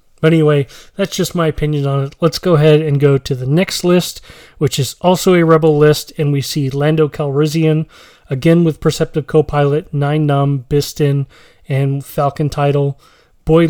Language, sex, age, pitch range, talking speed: English, male, 30-49, 140-165 Hz, 170 wpm